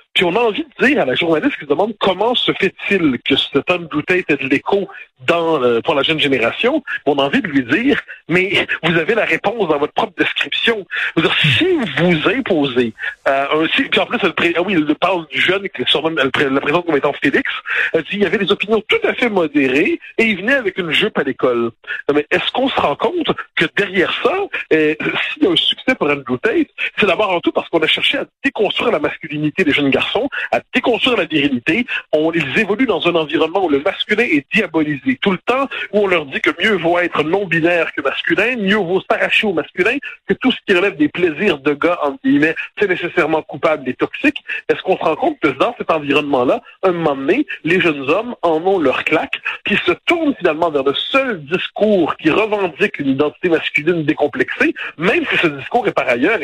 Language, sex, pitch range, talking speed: French, male, 150-225 Hz, 215 wpm